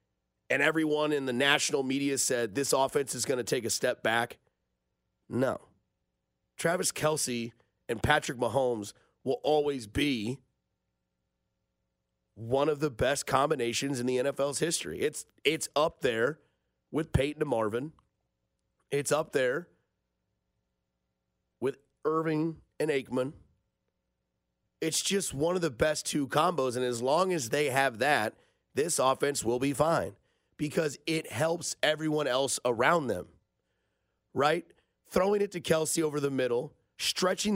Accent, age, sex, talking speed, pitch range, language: American, 30-49, male, 135 wpm, 115-165 Hz, English